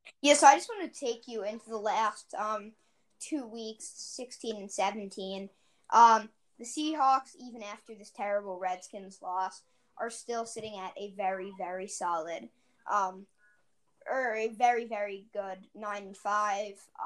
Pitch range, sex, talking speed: 195-235 Hz, female, 145 wpm